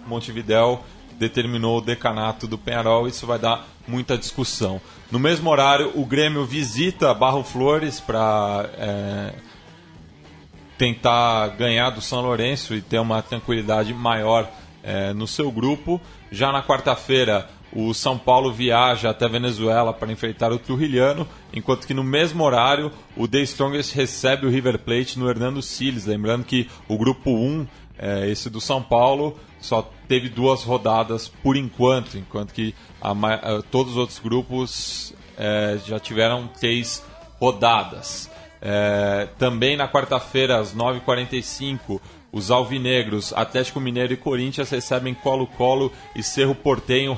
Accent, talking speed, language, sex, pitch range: Brazilian, 135 wpm, Portuguese, male, 110-130 Hz